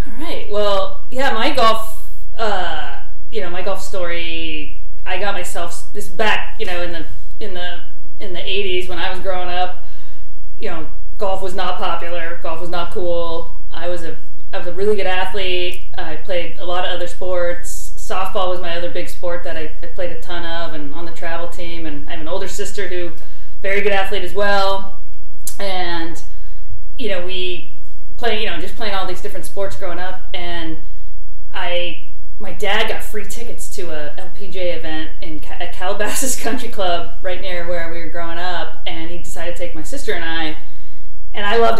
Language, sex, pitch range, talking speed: English, female, 165-195 Hz, 195 wpm